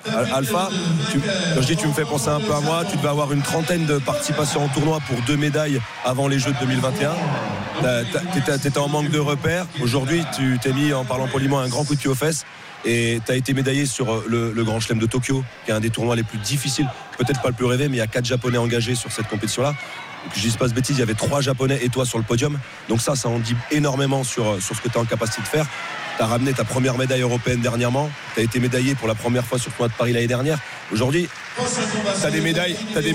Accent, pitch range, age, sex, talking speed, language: French, 125-155 Hz, 30-49, male, 260 wpm, French